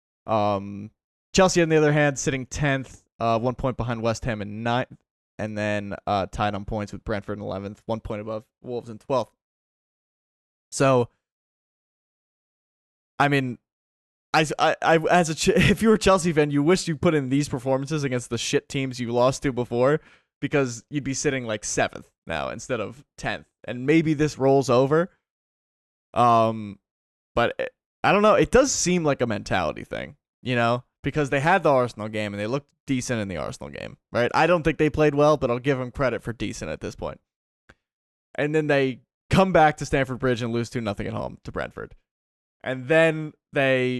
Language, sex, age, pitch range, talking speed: English, male, 20-39, 110-145 Hz, 190 wpm